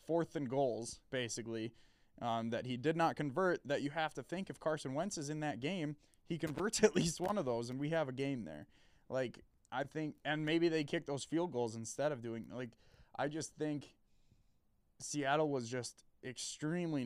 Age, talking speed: 20-39, 195 wpm